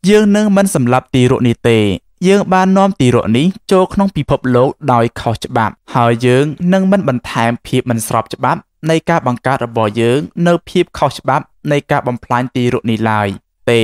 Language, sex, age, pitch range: English, male, 20-39, 115-150 Hz